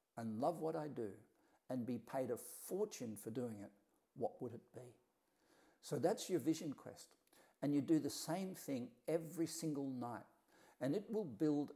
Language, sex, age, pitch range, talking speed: English, male, 60-79, 115-160 Hz, 180 wpm